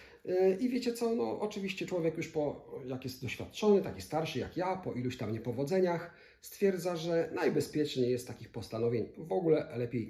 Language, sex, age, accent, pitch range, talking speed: Polish, male, 40-59, native, 120-165 Hz, 165 wpm